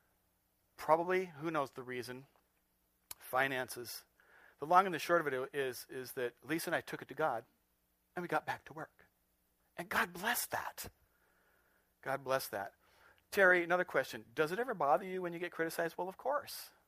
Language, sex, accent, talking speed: English, male, American, 180 wpm